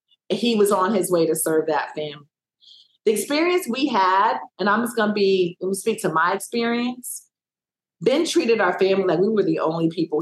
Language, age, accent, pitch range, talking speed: English, 40-59, American, 170-220 Hz, 205 wpm